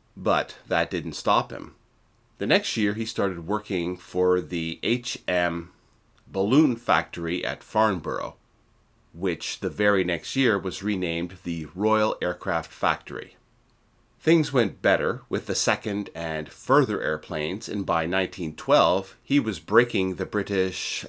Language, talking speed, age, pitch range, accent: English, 130 wpm, 30-49, 90-115 Hz, American